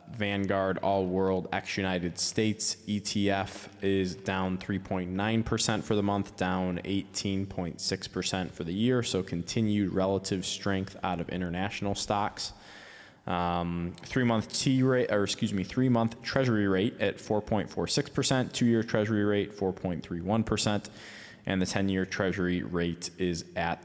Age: 20-39